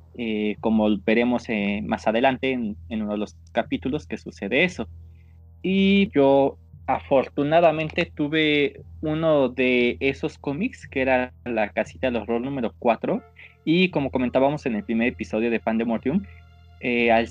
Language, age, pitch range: Spanish, 20-39, 105-140 Hz